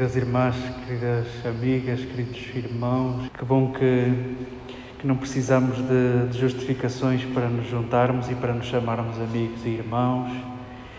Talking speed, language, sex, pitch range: 135 wpm, Portuguese, male, 125-140 Hz